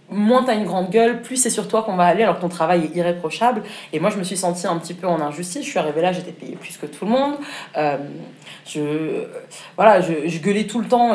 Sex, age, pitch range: female, 20-39, 160-220 Hz